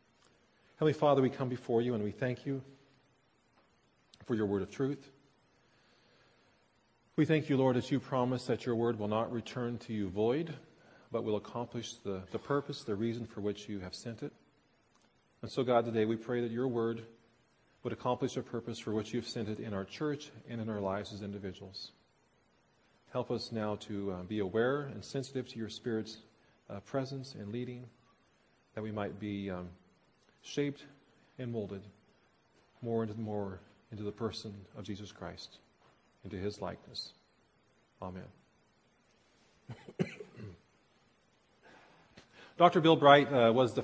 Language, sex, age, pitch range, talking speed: English, male, 40-59, 105-135 Hz, 155 wpm